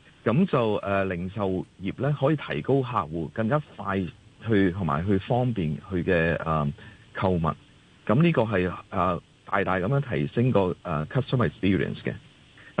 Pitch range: 95-140 Hz